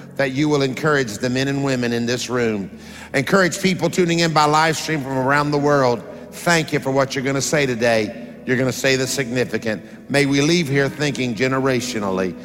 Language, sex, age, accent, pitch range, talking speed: English, male, 50-69, American, 150-210 Hz, 200 wpm